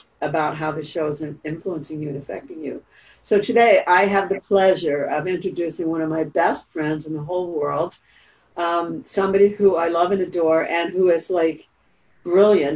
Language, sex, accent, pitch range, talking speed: English, female, American, 160-195 Hz, 185 wpm